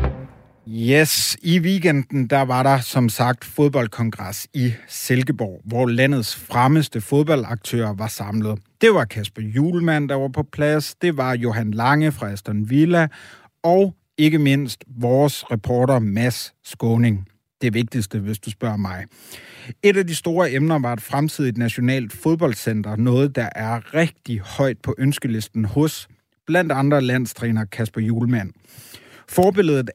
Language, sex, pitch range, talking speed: Danish, male, 115-150 Hz, 140 wpm